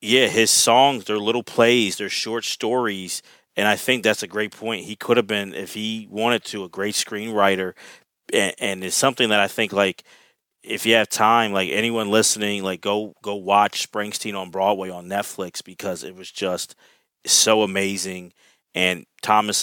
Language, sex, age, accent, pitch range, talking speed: English, male, 30-49, American, 100-115 Hz, 180 wpm